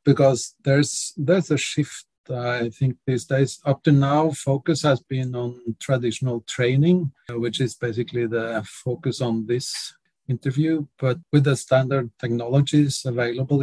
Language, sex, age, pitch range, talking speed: English, male, 40-59, 125-150 Hz, 140 wpm